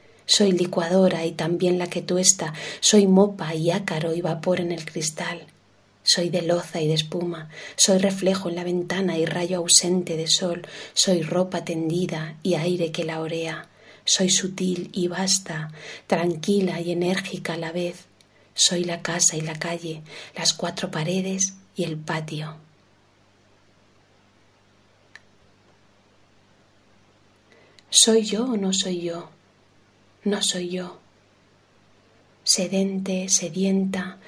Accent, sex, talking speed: Spanish, female, 130 wpm